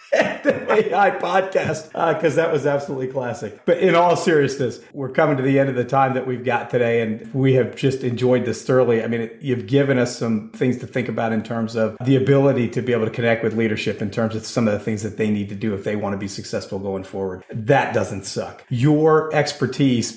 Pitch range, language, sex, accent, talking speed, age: 110-135 Hz, English, male, American, 240 wpm, 40-59